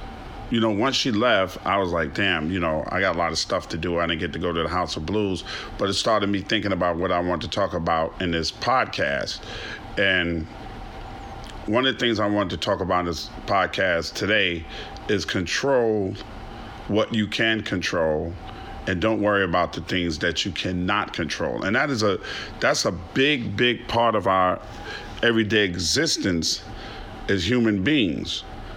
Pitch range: 90-110 Hz